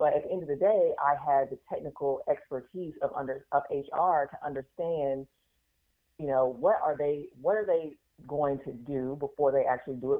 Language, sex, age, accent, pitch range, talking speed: English, female, 30-49, American, 130-165 Hz, 200 wpm